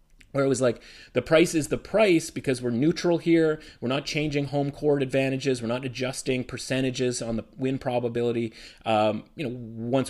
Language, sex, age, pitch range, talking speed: English, male, 30-49, 110-145 Hz, 185 wpm